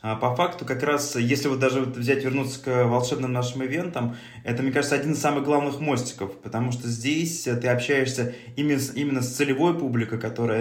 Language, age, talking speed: Russian, 20-39, 180 wpm